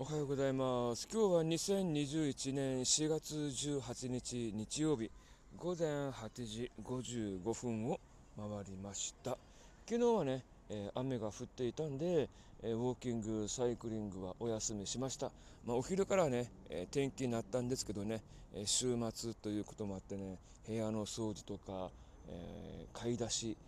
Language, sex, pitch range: Japanese, male, 105-140 Hz